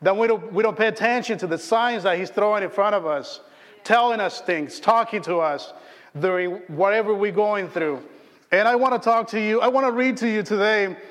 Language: English